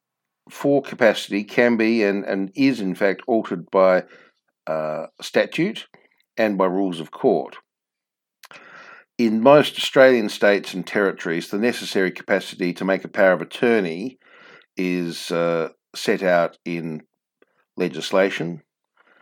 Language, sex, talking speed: English, male, 120 wpm